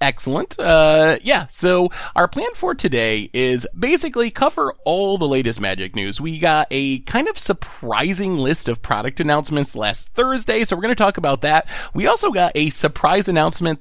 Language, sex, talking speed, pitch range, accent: English, male, 180 wpm, 140-205 Hz, American